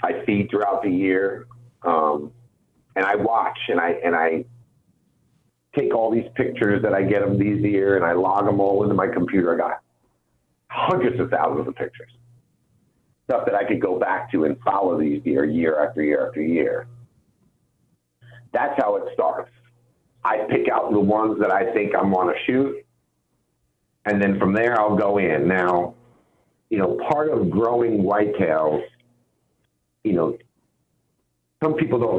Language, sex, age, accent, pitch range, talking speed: English, male, 50-69, American, 90-120 Hz, 165 wpm